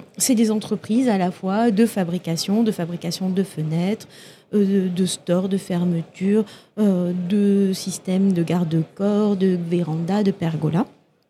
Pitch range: 190-230 Hz